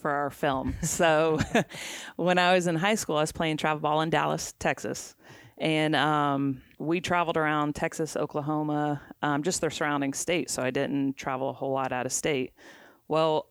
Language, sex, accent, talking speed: English, female, American, 180 wpm